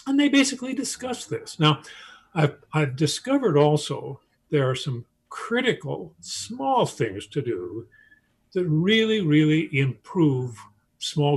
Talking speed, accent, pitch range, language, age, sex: 120 wpm, American, 145-215 Hz, English, 50-69, male